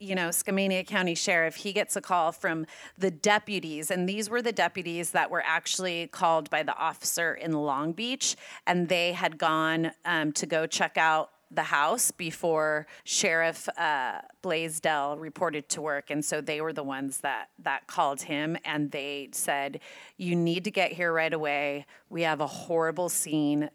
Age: 30-49